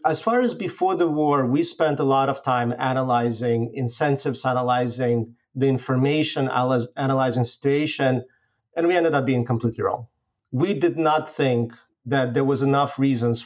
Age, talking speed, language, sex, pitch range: 40-59, 160 wpm, English, male, 125-155 Hz